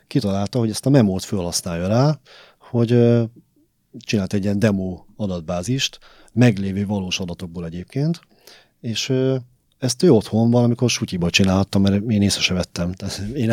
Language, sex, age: Hungarian, male, 30-49